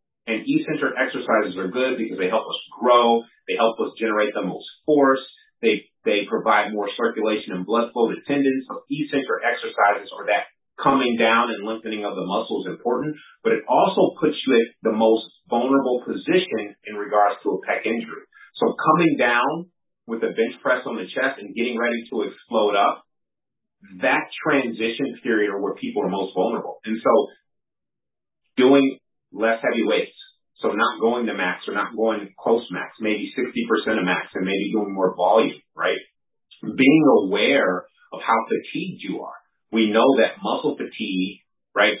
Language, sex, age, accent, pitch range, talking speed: English, male, 30-49, American, 105-130 Hz, 175 wpm